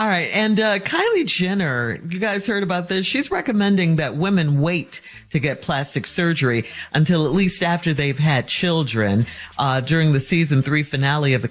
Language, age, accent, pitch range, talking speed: English, 50-69, American, 140-180 Hz, 180 wpm